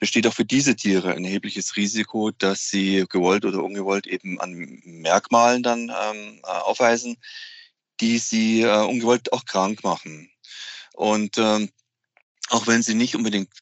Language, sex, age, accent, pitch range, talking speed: German, male, 30-49, German, 100-120 Hz, 145 wpm